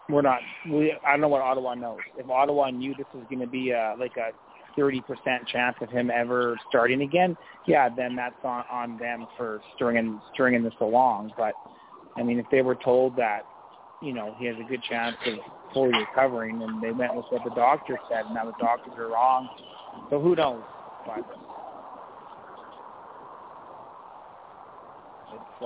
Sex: male